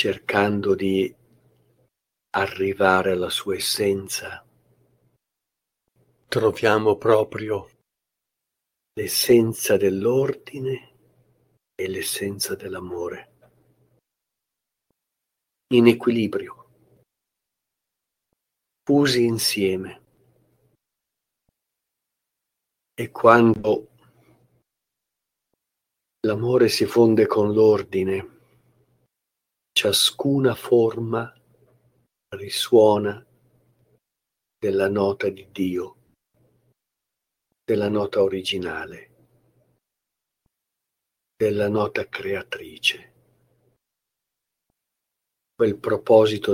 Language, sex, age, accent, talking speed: Italian, male, 50-69, native, 50 wpm